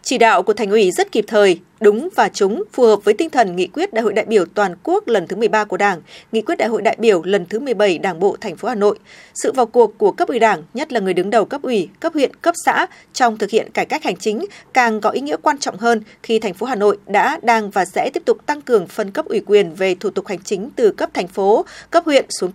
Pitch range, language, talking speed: 210-345 Hz, Vietnamese, 280 wpm